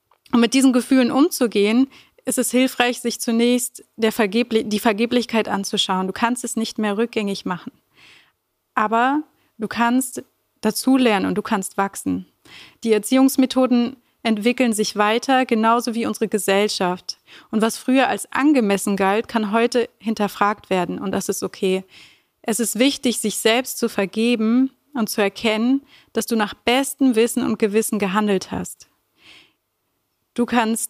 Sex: female